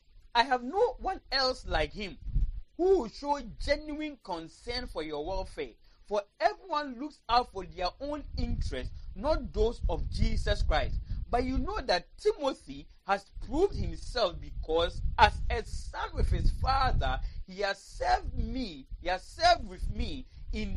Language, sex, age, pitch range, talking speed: English, male, 40-59, 205-305 Hz, 155 wpm